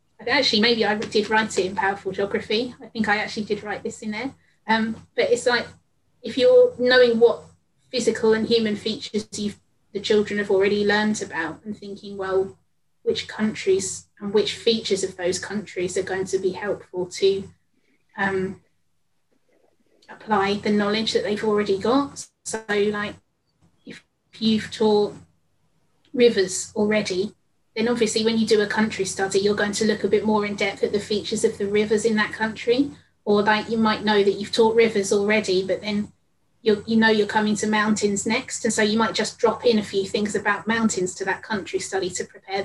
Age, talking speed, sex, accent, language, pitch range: 20-39, 185 wpm, female, British, English, 200-225 Hz